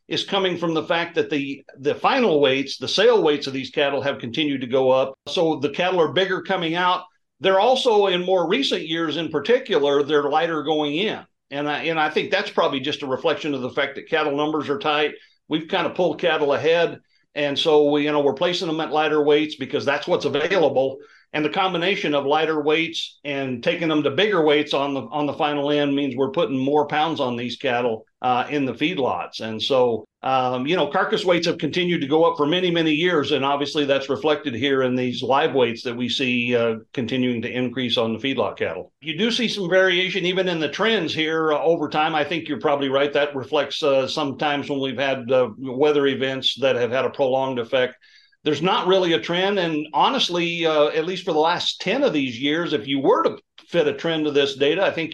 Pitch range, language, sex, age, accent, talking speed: 140-170 Hz, English, male, 50-69, American, 225 wpm